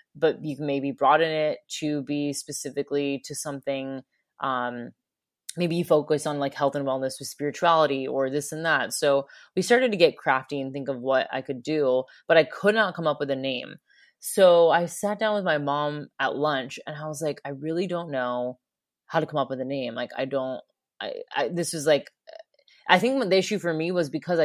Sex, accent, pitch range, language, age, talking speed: female, American, 140-160 Hz, English, 20-39, 215 wpm